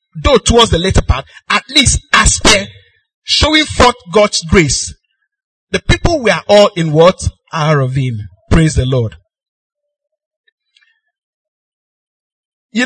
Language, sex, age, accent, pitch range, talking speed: English, male, 50-69, Nigerian, 140-220 Hz, 115 wpm